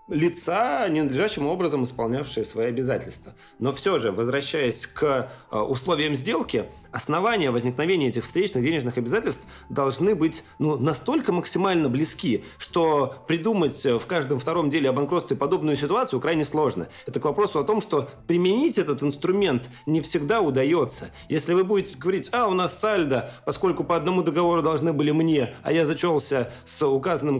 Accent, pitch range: native, 135-175 Hz